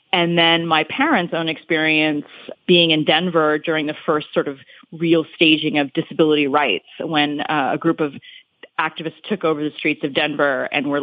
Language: English